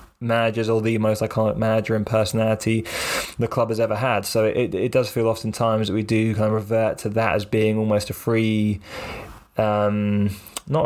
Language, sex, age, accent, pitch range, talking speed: English, male, 20-39, British, 105-115 Hz, 190 wpm